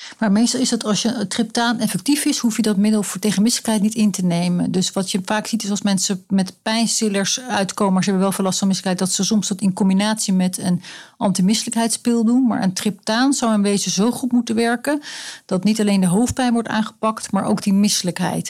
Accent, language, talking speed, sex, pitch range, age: Dutch, Dutch, 220 wpm, female, 185-220 Hz, 40-59